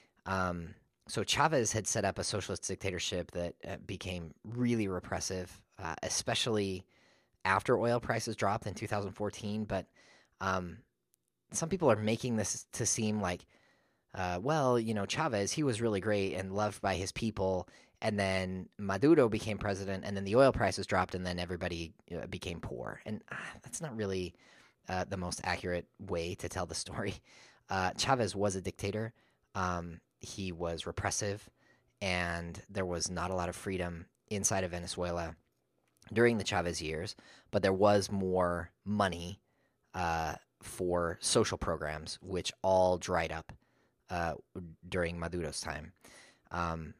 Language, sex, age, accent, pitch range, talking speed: English, male, 30-49, American, 85-105 Hz, 155 wpm